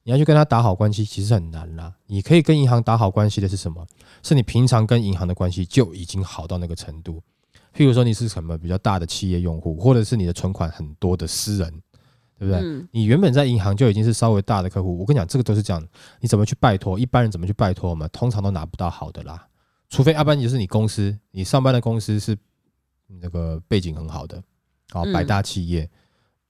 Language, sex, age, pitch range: Chinese, male, 20-39, 90-120 Hz